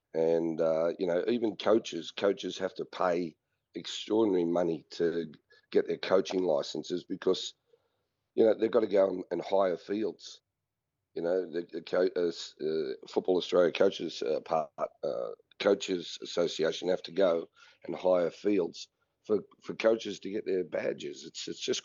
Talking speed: 145 wpm